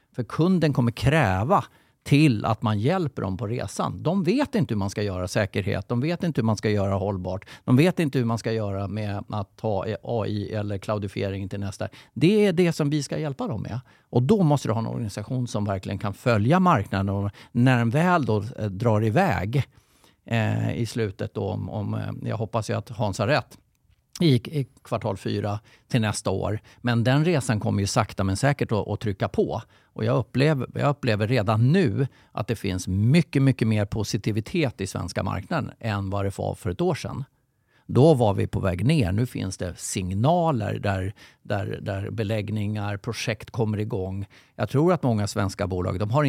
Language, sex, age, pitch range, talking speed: Swedish, male, 50-69, 100-130 Hz, 195 wpm